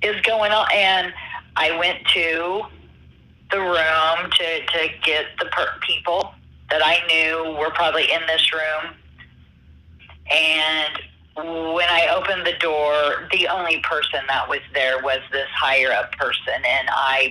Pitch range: 130-165 Hz